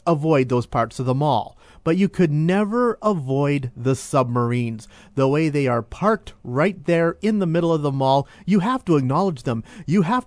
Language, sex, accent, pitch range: English, male, American, 130-180 Hz